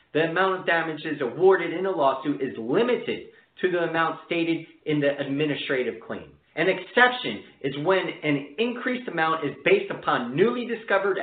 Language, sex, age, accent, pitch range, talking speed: English, male, 40-59, American, 140-190 Hz, 160 wpm